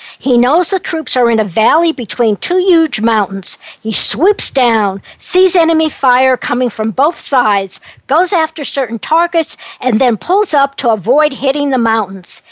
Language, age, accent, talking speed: English, 60-79, American, 170 wpm